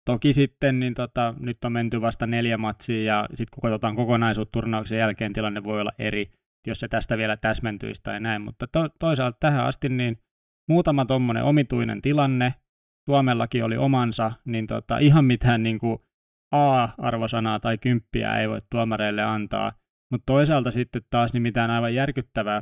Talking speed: 160 wpm